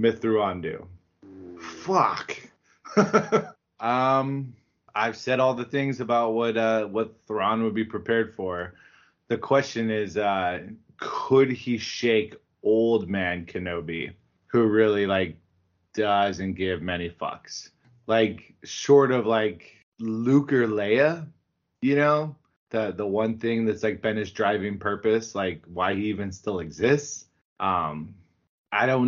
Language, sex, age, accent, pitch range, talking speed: English, male, 20-39, American, 95-120 Hz, 130 wpm